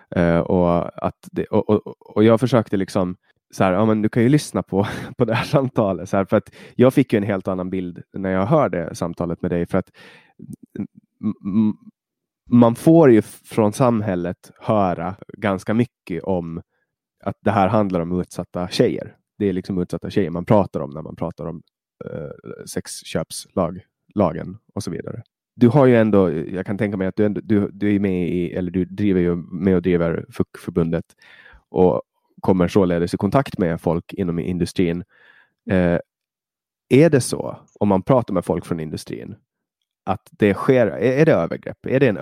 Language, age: Swedish, 20-39